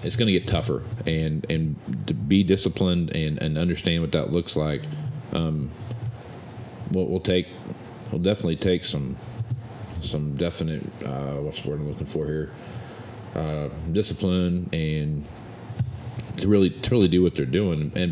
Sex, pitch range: male, 80-110 Hz